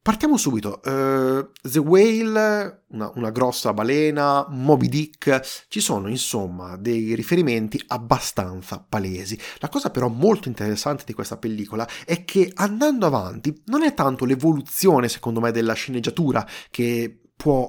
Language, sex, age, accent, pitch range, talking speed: Italian, male, 30-49, native, 115-170 Hz, 130 wpm